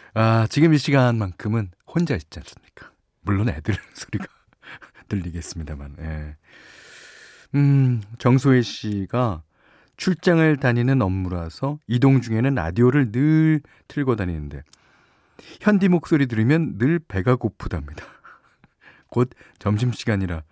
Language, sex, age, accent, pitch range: Korean, male, 40-59, native, 95-150 Hz